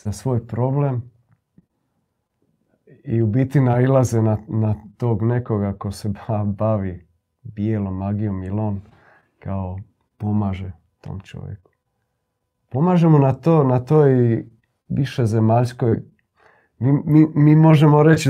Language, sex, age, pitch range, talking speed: Croatian, male, 40-59, 105-125 Hz, 110 wpm